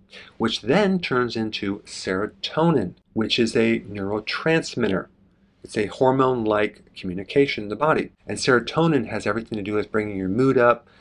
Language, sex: English, male